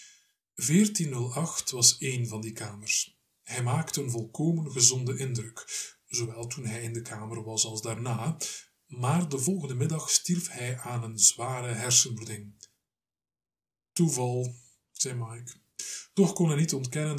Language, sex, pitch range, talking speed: Dutch, male, 120-145 Hz, 135 wpm